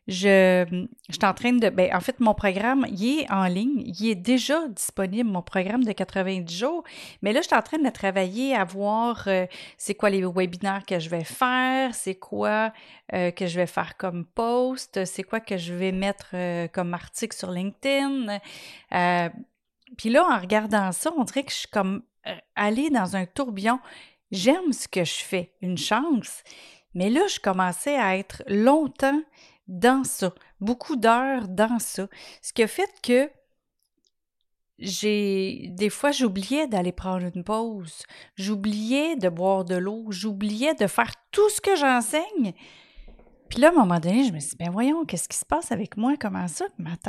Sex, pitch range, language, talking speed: female, 185-255 Hz, French, 185 wpm